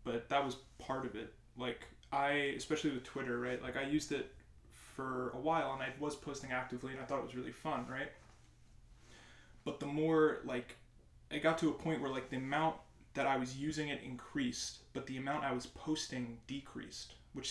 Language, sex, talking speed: English, male, 200 wpm